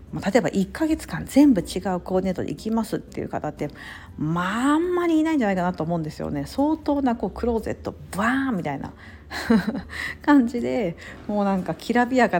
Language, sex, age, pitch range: Japanese, female, 50-69, 165-275 Hz